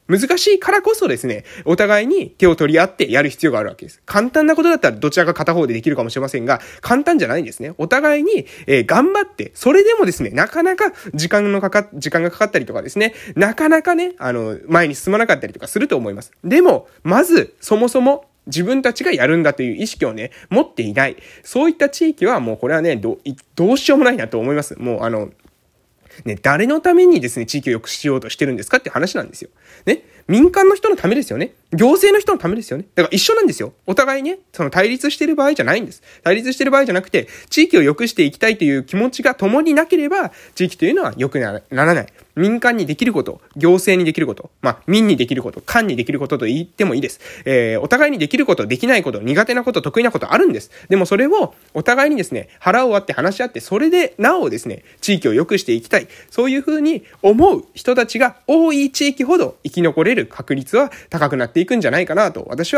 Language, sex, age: Japanese, male, 20-39